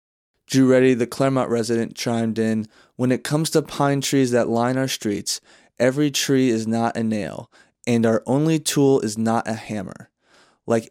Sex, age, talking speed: male, 20-39, 175 wpm